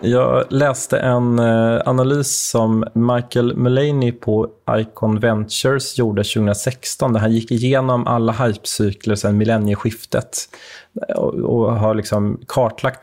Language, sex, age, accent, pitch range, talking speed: Swedish, male, 30-49, native, 105-120 Hz, 110 wpm